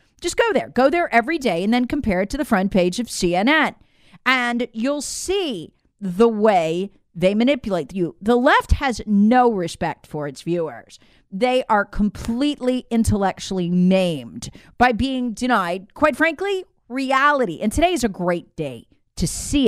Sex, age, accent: female, 40-59, American